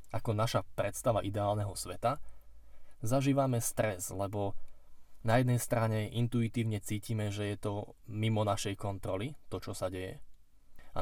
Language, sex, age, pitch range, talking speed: Slovak, male, 20-39, 95-115 Hz, 130 wpm